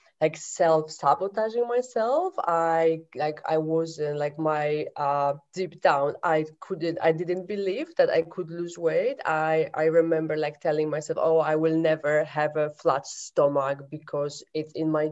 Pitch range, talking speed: 150-165 Hz, 165 wpm